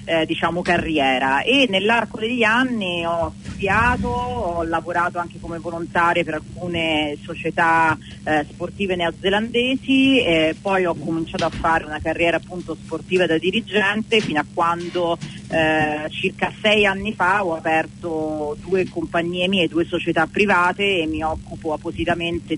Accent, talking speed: native, 140 wpm